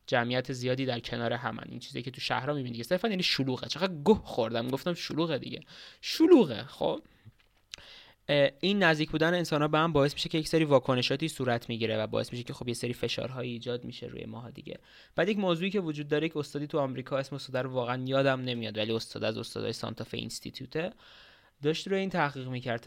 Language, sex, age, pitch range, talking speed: Persian, male, 20-39, 120-145 Hz, 205 wpm